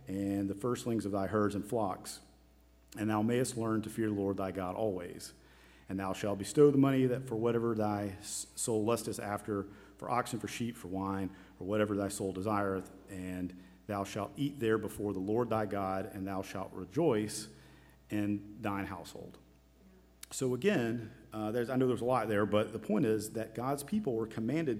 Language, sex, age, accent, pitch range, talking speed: English, male, 40-59, American, 95-120 Hz, 190 wpm